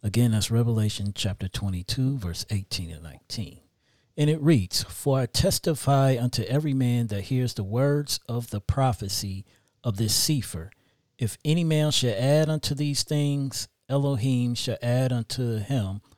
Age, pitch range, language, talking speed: 40-59, 105-135 Hz, English, 150 wpm